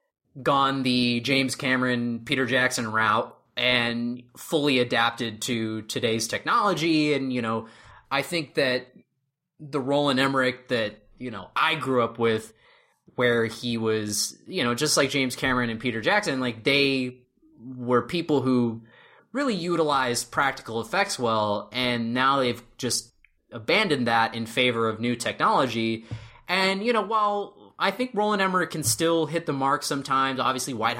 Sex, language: male, English